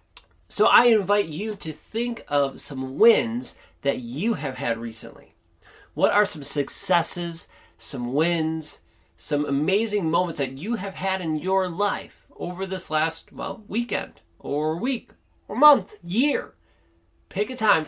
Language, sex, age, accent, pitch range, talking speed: English, male, 30-49, American, 135-195 Hz, 145 wpm